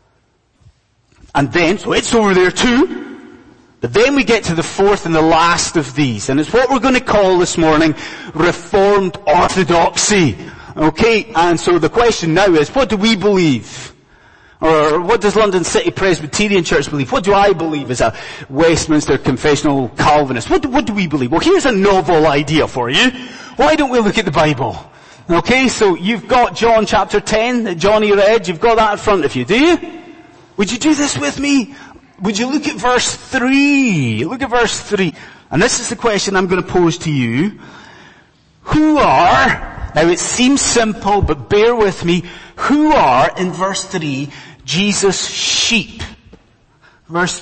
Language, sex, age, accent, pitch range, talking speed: English, male, 30-49, British, 155-230 Hz, 180 wpm